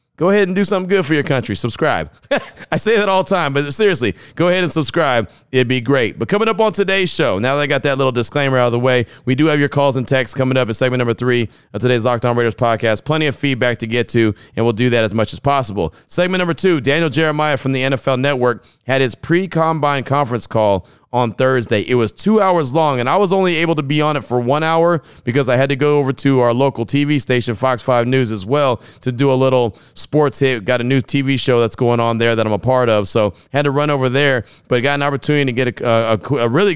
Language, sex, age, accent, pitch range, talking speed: English, male, 30-49, American, 120-145 Hz, 260 wpm